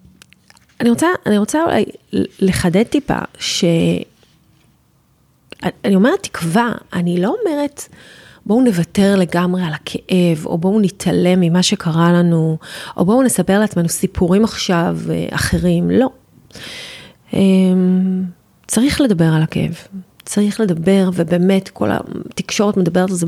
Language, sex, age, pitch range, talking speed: Hebrew, female, 30-49, 175-230 Hz, 115 wpm